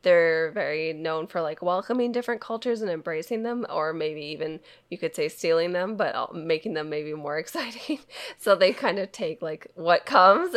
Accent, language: American, English